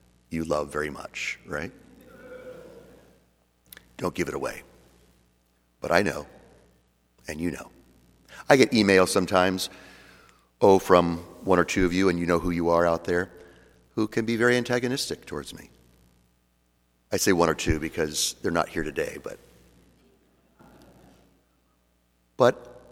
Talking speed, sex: 140 wpm, male